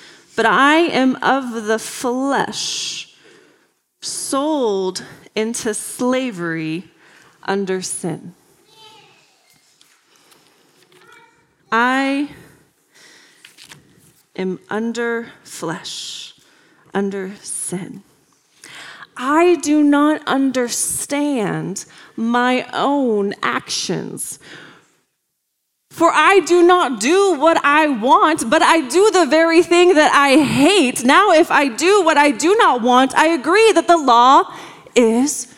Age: 30-49